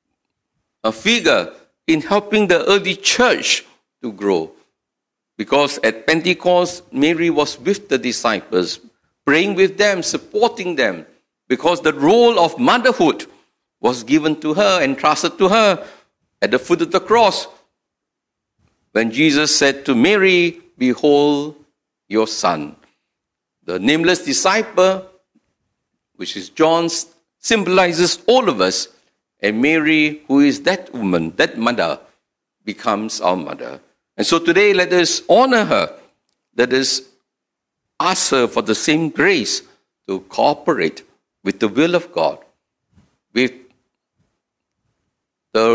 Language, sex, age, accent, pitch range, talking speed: English, male, 50-69, Malaysian, 130-185 Hz, 120 wpm